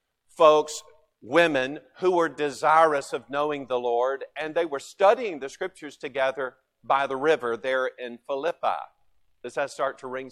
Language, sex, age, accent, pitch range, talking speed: English, male, 50-69, American, 135-195 Hz, 155 wpm